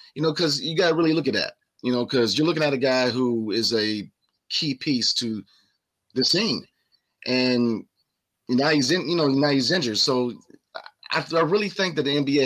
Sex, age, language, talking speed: male, 30-49, English, 205 wpm